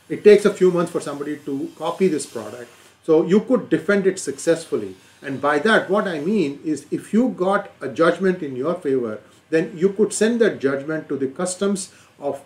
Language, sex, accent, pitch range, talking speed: English, male, Indian, 150-205 Hz, 200 wpm